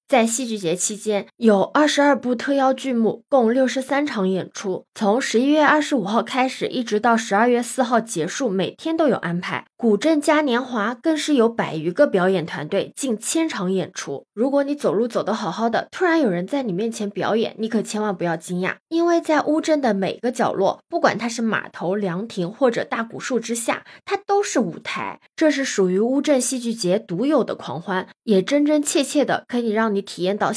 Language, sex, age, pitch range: Chinese, female, 20-39, 200-280 Hz